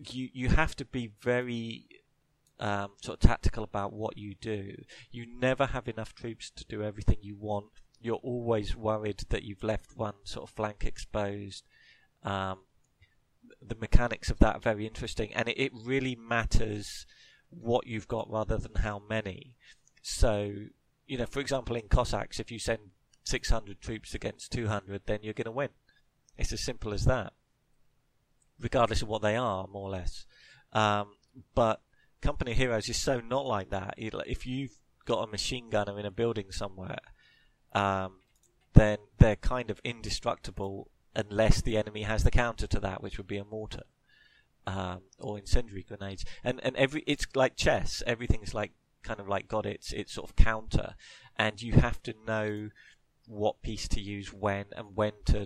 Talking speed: 175 wpm